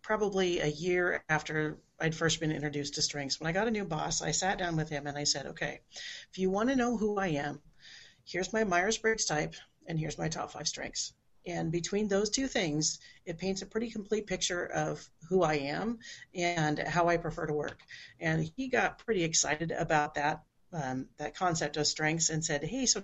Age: 40-59